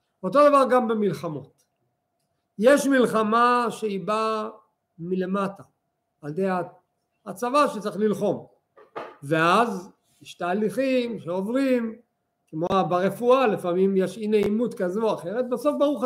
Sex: male